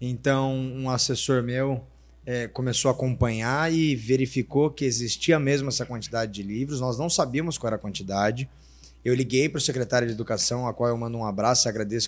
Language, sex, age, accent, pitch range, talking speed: Portuguese, male, 20-39, Brazilian, 120-175 Hz, 195 wpm